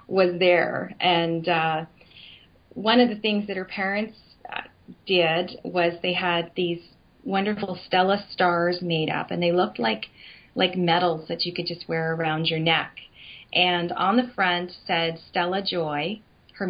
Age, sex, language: 30-49, female, English